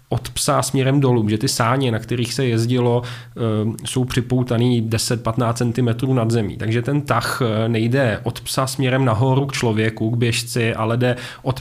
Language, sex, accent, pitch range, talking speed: Czech, male, native, 115-130 Hz, 165 wpm